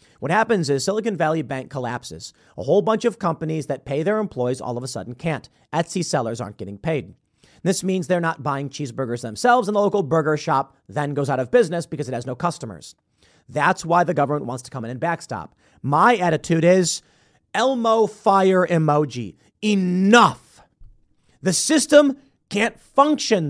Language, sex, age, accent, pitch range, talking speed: English, male, 40-59, American, 135-190 Hz, 175 wpm